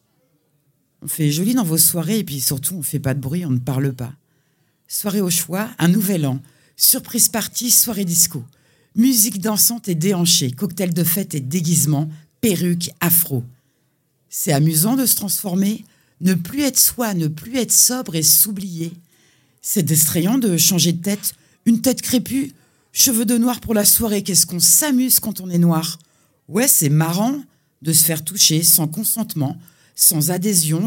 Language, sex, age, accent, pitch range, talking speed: French, female, 50-69, French, 150-195 Hz, 170 wpm